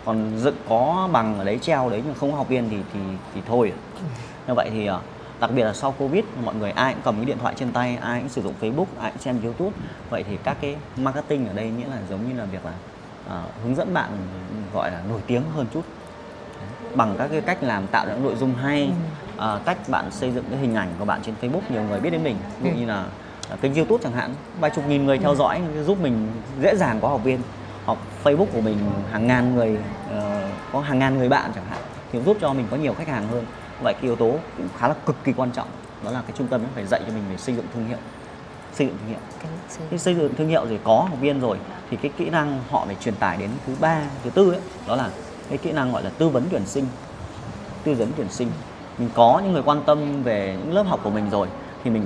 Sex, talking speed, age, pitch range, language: male, 255 wpm, 20-39, 110-145 Hz, Vietnamese